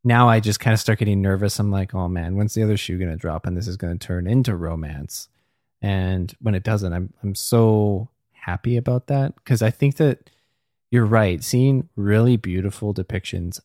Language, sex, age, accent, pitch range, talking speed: English, male, 20-39, American, 95-115 Hz, 205 wpm